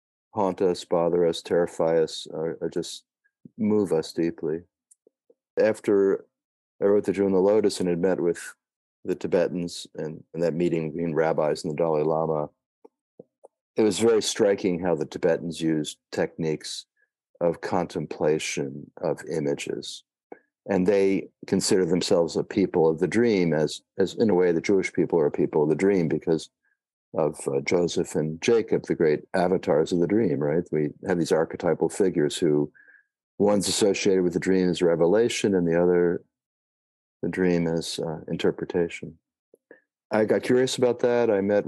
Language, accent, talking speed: English, American, 160 wpm